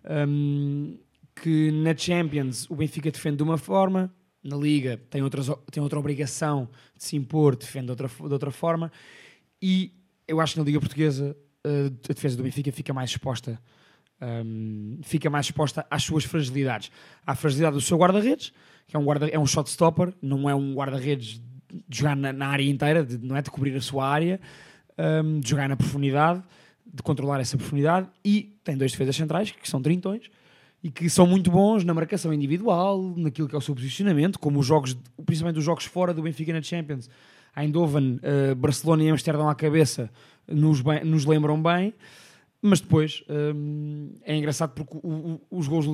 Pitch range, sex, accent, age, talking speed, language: 140-165 Hz, male, Portuguese, 20-39, 175 wpm, Portuguese